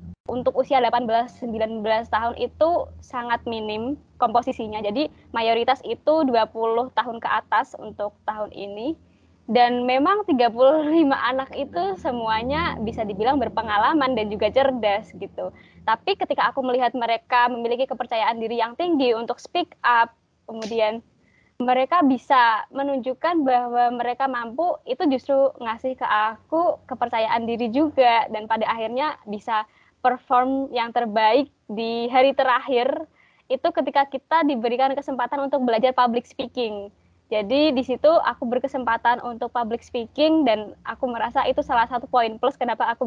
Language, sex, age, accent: Indonesian, female, 20-39, native